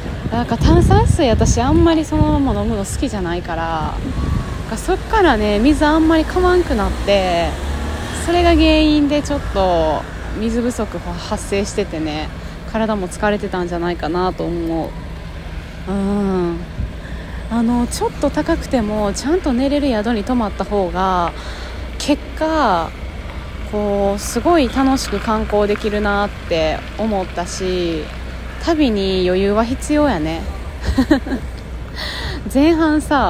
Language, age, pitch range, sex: Japanese, 20-39, 165-240 Hz, female